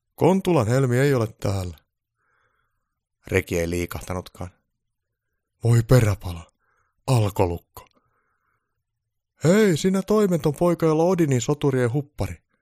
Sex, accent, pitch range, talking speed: male, native, 95-150 Hz, 90 wpm